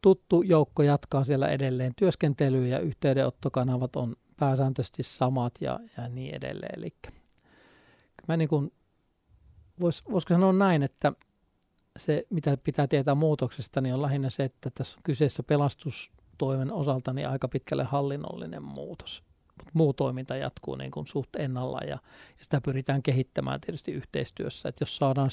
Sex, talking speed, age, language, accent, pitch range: male, 135 wpm, 50-69, Finnish, native, 130-145 Hz